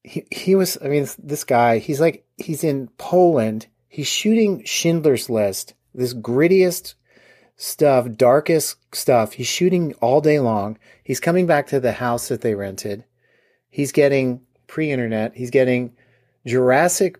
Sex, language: male, English